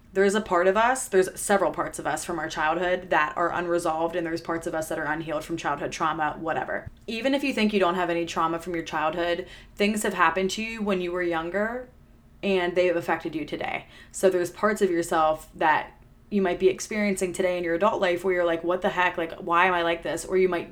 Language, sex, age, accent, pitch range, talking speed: English, female, 20-39, American, 170-190 Hz, 250 wpm